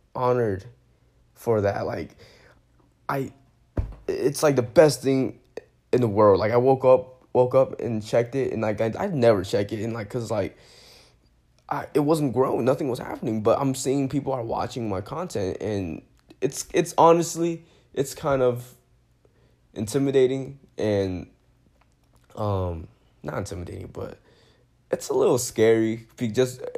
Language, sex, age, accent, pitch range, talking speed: English, male, 10-29, American, 105-140 Hz, 150 wpm